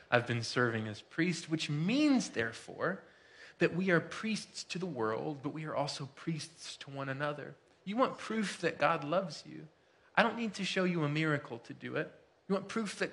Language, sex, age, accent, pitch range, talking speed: English, male, 20-39, American, 140-185 Hz, 205 wpm